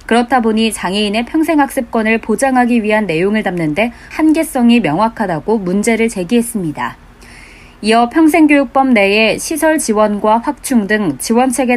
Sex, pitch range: female, 215-265 Hz